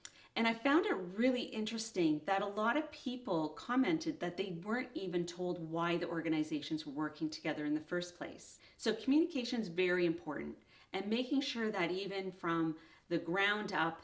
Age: 40-59